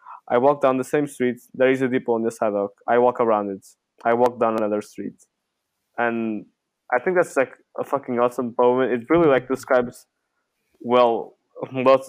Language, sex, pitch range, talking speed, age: English, male, 115-135 Hz, 185 wpm, 20-39